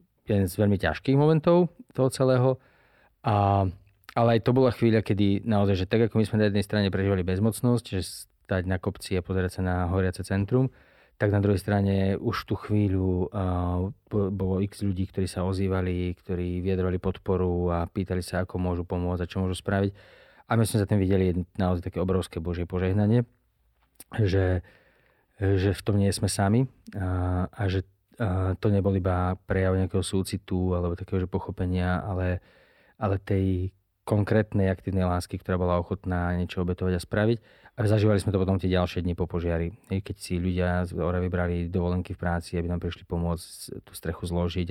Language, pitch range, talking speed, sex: Slovak, 90-100 Hz, 180 wpm, male